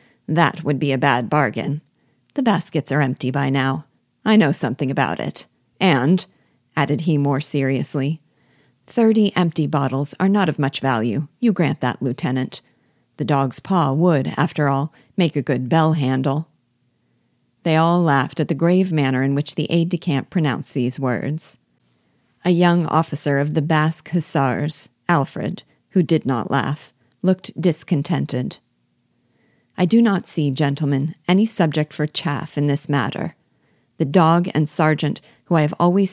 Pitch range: 140-175 Hz